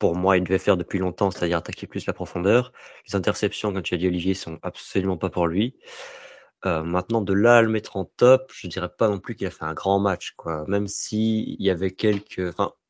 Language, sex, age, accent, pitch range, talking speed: French, male, 30-49, French, 85-105 Hz, 240 wpm